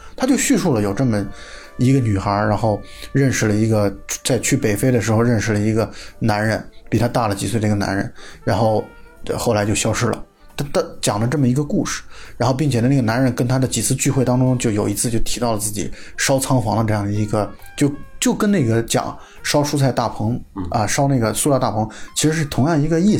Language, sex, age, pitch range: Chinese, male, 20-39, 110-145 Hz